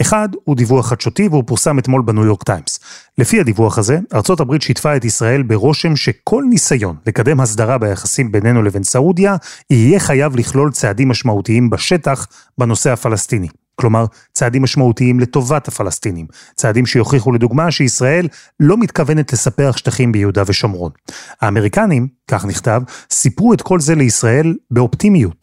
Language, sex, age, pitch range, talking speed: Hebrew, male, 30-49, 115-150 Hz, 135 wpm